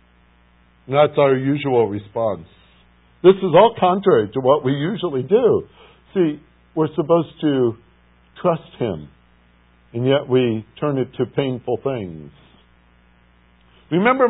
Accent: American